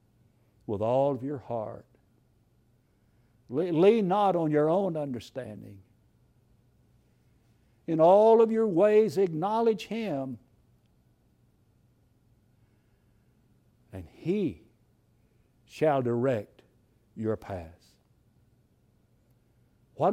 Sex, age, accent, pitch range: male, 60-79, American, 110-155 Hz